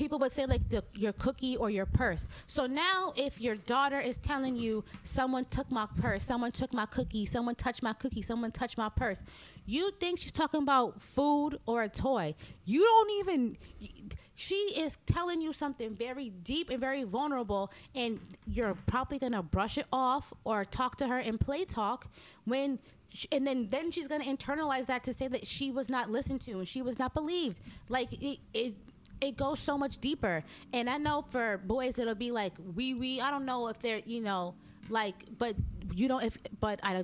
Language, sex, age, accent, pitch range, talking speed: English, female, 20-39, American, 180-260 Hz, 200 wpm